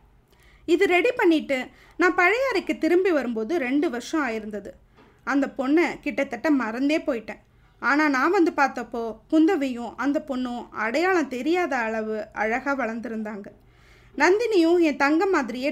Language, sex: Tamil, female